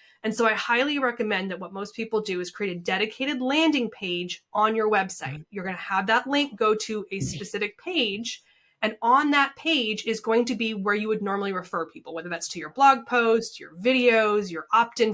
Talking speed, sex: 215 wpm, female